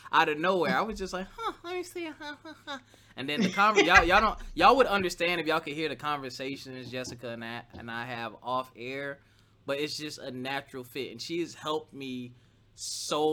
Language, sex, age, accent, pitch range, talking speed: English, male, 20-39, American, 120-155 Hz, 210 wpm